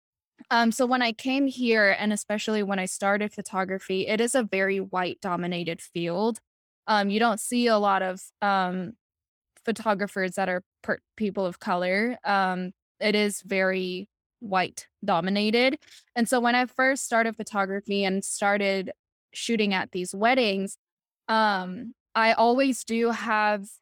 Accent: American